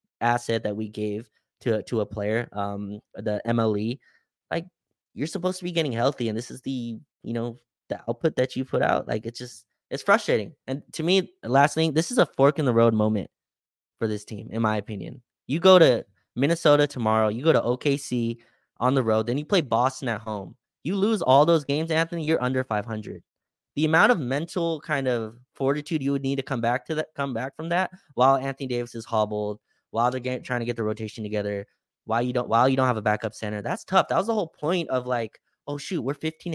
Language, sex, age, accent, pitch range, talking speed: English, male, 20-39, American, 115-160 Hz, 225 wpm